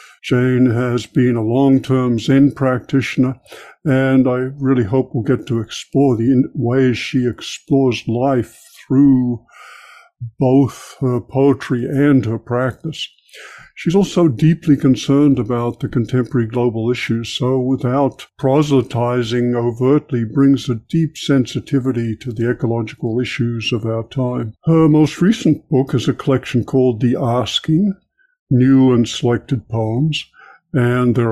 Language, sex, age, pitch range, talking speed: English, male, 60-79, 120-140 Hz, 130 wpm